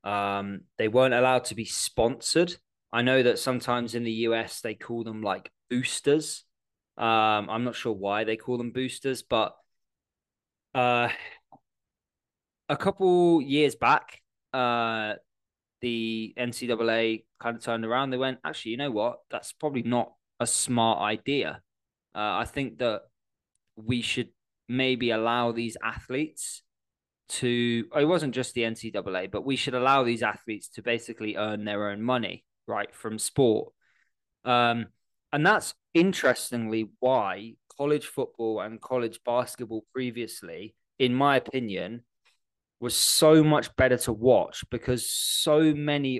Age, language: 20-39, English